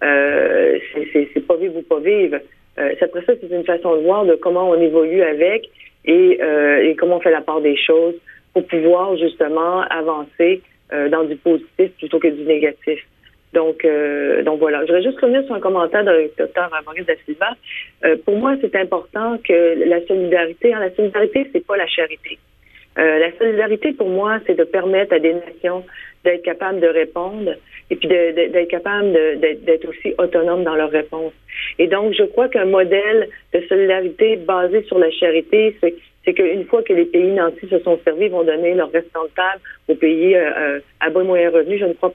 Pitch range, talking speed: 160-205 Hz, 205 wpm